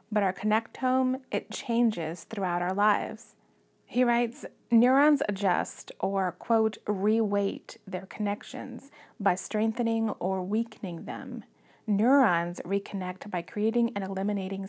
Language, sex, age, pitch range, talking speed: English, female, 30-49, 195-225 Hz, 115 wpm